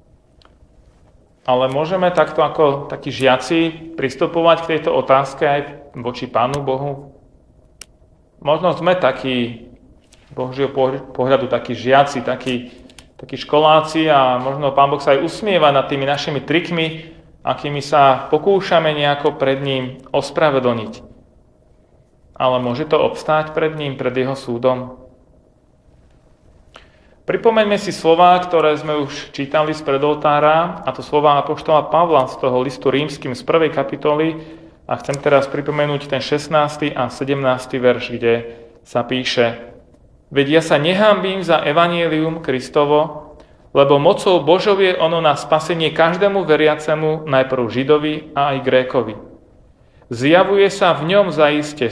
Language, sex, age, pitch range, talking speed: Slovak, male, 40-59, 130-155 Hz, 125 wpm